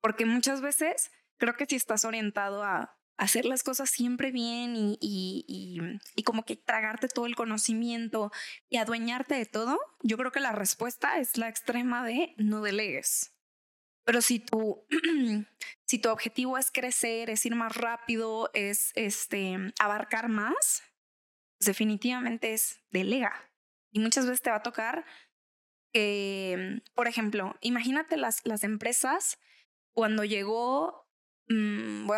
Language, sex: Spanish, female